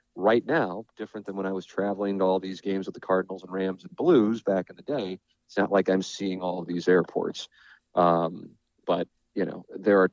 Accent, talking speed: American, 225 wpm